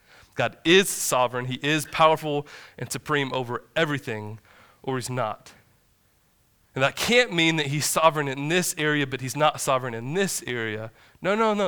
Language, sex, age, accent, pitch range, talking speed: English, male, 20-39, American, 125-160 Hz, 170 wpm